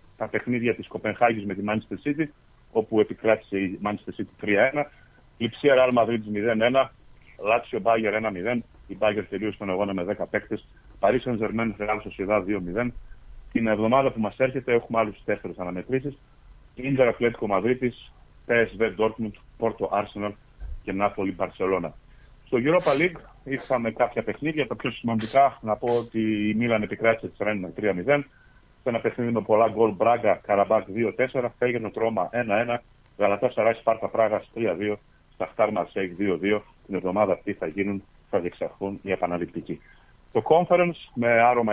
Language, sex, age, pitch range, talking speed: Greek, male, 40-59, 105-125 Hz, 145 wpm